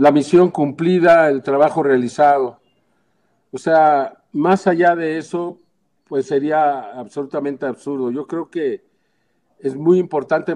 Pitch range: 140-175 Hz